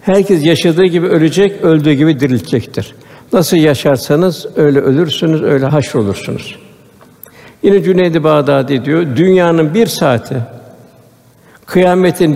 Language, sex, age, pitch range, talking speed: Turkish, male, 60-79, 140-175 Hz, 105 wpm